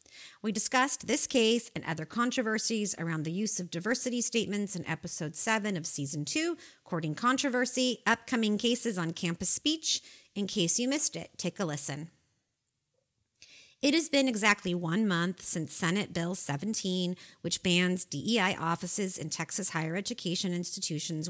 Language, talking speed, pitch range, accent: English, 150 wpm, 170-220 Hz, American